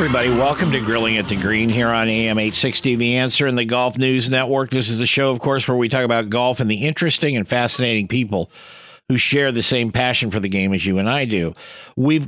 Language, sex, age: English, male, 50-69